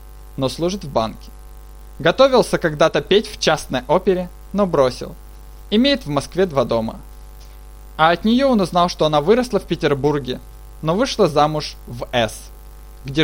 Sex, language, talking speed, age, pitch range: male, Russian, 150 wpm, 20-39, 125-190 Hz